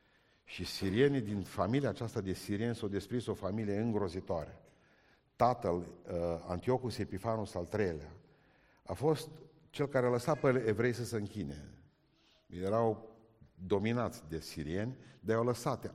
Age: 50-69